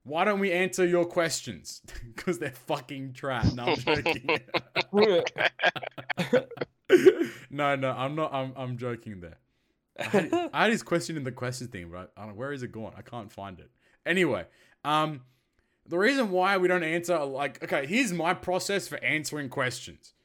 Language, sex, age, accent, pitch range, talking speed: English, male, 20-39, Australian, 135-180 Hz, 170 wpm